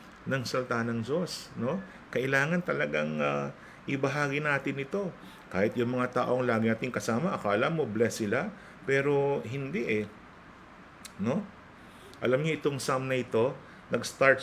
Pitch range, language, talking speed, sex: 105-135 Hz, Filipino, 135 wpm, male